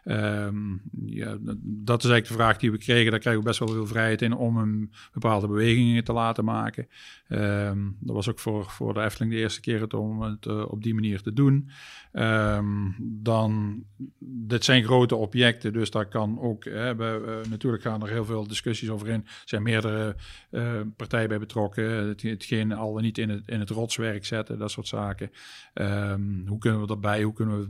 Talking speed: 205 wpm